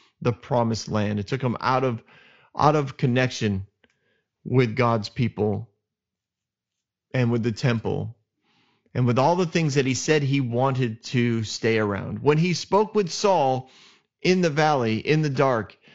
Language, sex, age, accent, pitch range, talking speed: English, male, 30-49, American, 120-155 Hz, 160 wpm